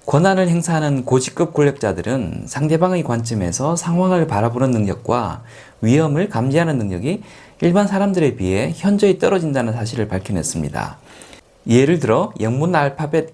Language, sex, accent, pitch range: Korean, male, native, 115-165 Hz